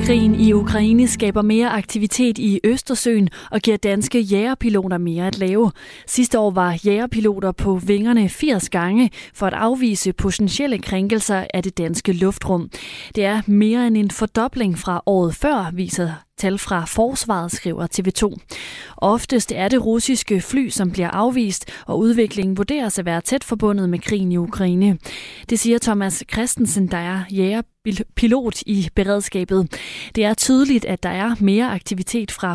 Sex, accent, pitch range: female, native, 185-225 Hz